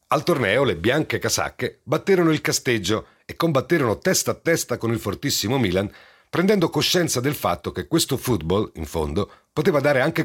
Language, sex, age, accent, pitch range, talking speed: Italian, male, 40-59, native, 110-165 Hz, 170 wpm